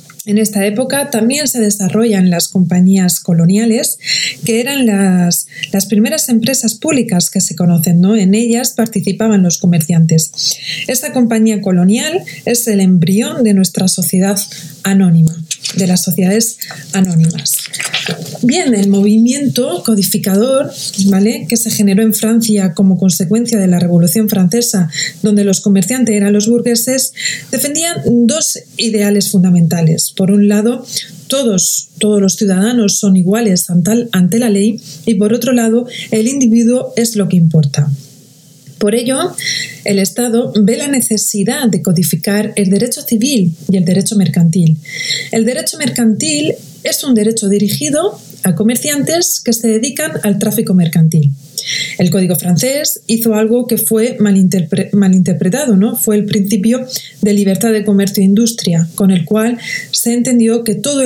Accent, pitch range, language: Spanish, 180-230 Hz, Spanish